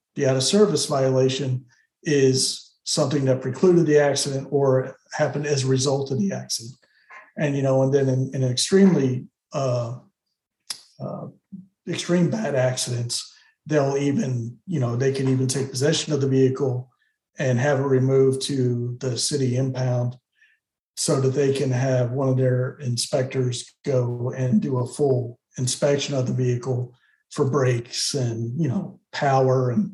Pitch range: 130-145 Hz